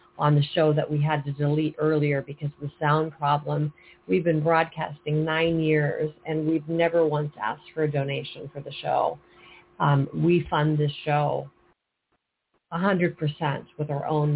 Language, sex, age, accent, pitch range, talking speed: English, female, 40-59, American, 150-170 Hz, 165 wpm